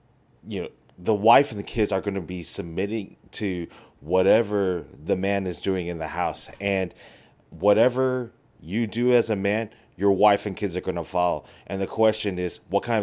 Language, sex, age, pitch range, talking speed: English, male, 30-49, 90-110 Hz, 195 wpm